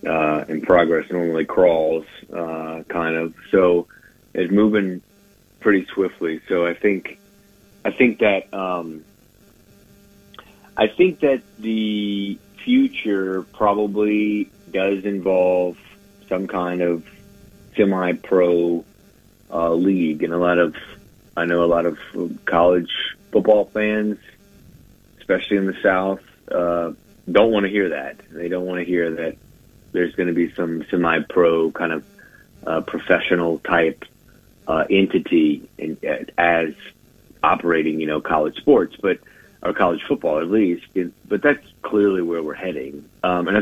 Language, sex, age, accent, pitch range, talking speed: English, male, 40-59, American, 85-100 Hz, 140 wpm